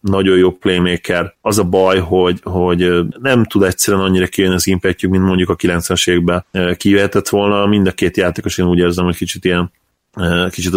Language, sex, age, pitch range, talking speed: Hungarian, male, 20-39, 90-100 Hz, 180 wpm